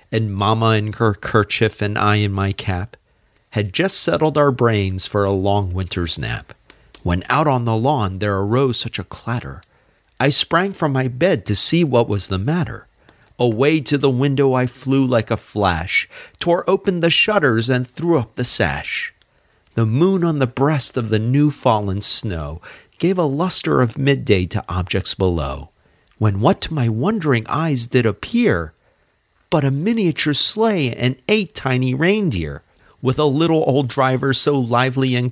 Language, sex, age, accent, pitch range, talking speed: English, male, 40-59, American, 110-165 Hz, 170 wpm